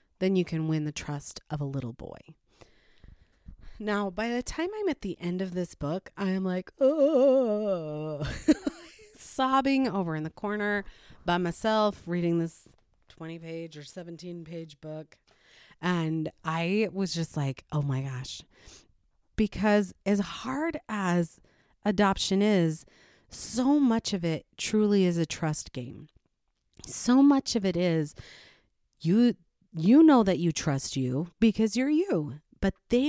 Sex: female